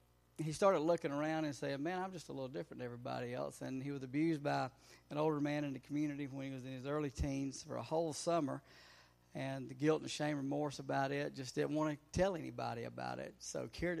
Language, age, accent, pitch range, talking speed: English, 50-69, American, 125-150 Hz, 240 wpm